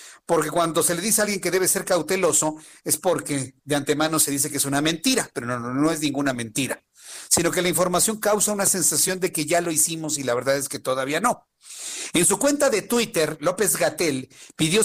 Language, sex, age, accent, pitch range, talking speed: Spanish, male, 50-69, Mexican, 145-195 Hz, 220 wpm